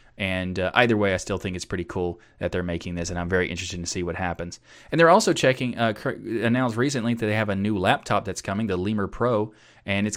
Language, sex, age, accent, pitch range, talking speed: English, male, 30-49, American, 90-115 Hz, 255 wpm